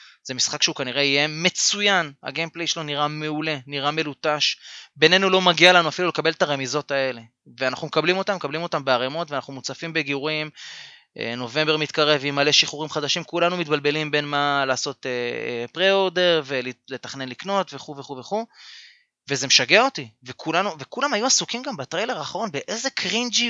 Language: Hebrew